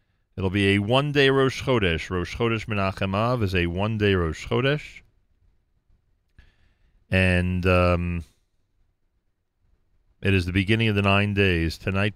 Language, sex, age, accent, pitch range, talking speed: English, male, 40-59, American, 90-115 Hz, 130 wpm